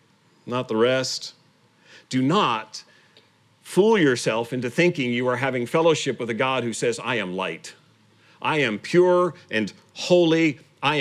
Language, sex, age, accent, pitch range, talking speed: English, male, 40-59, American, 125-160 Hz, 145 wpm